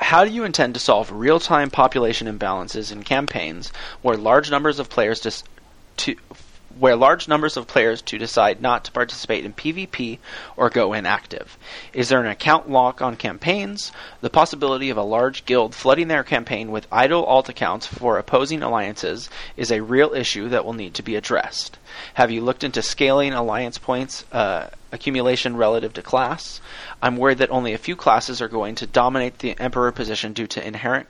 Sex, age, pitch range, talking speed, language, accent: male, 30-49, 115-140 Hz, 180 wpm, English, American